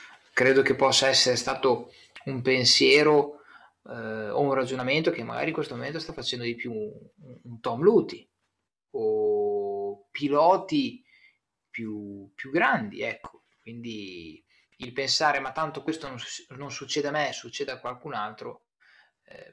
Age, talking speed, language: 20-39, 140 wpm, Italian